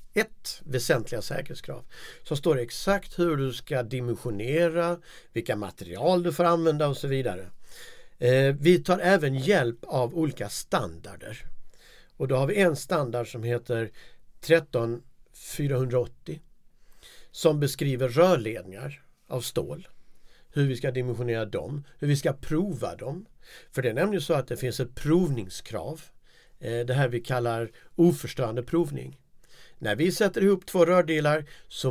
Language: Swedish